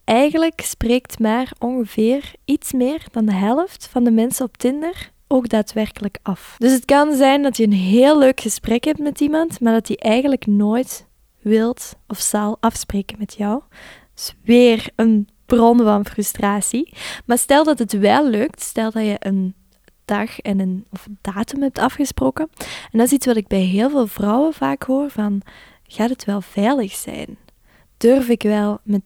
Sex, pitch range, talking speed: female, 210-260 Hz, 180 wpm